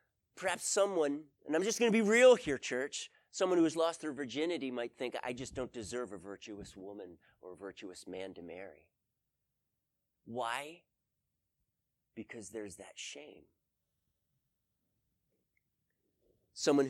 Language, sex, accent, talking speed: English, male, American, 135 wpm